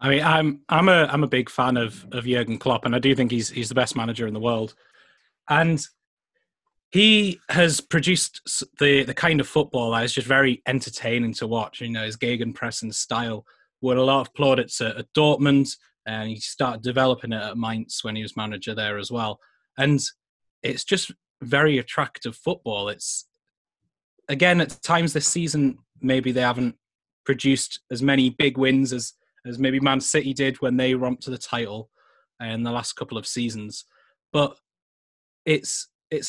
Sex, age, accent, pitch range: male, 20-39, British, 115-140 Hz